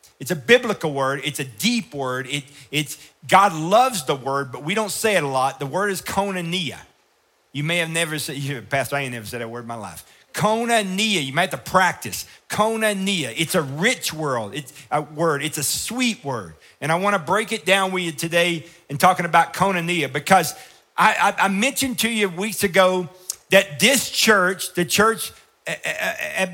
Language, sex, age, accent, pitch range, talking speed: English, male, 50-69, American, 155-220 Hz, 195 wpm